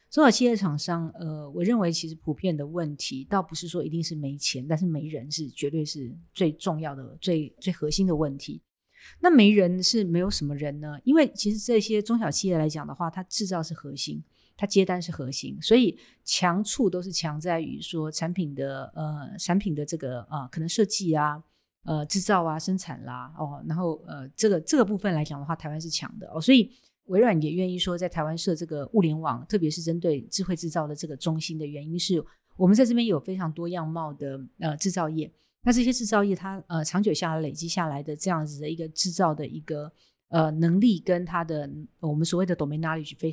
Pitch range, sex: 150-190 Hz, female